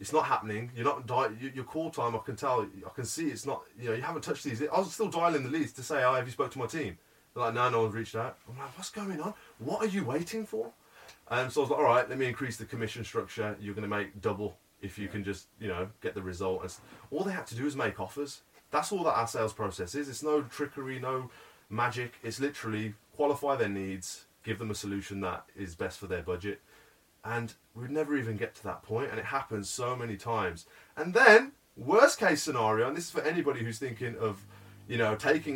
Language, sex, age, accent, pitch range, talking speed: English, male, 20-39, British, 100-140 Hz, 250 wpm